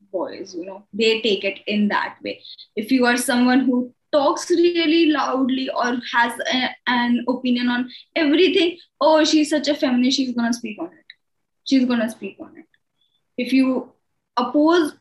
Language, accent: English, Indian